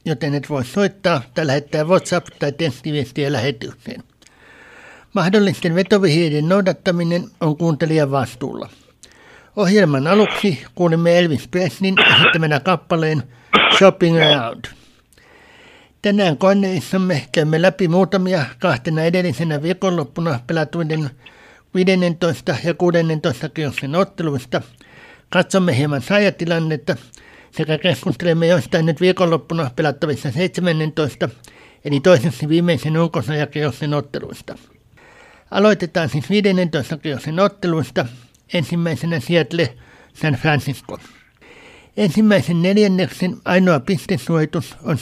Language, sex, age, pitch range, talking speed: Finnish, male, 60-79, 150-185 Hz, 90 wpm